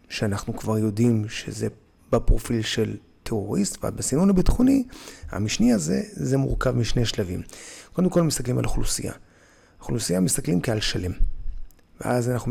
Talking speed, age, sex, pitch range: 130 wpm, 30-49, male, 100-130 Hz